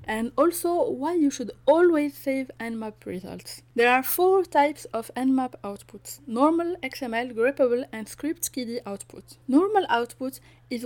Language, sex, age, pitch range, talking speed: English, female, 20-39, 235-280 Hz, 145 wpm